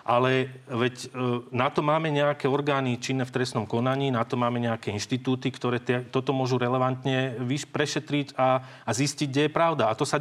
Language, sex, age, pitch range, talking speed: Slovak, male, 40-59, 115-135 Hz, 175 wpm